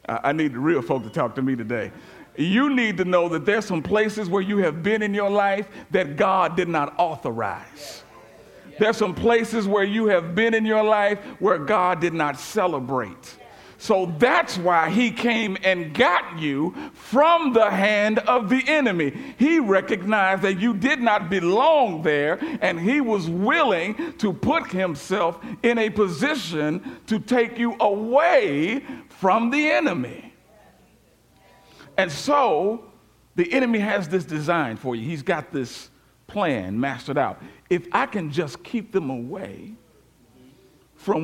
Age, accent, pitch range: 50-69, American, 155-225 Hz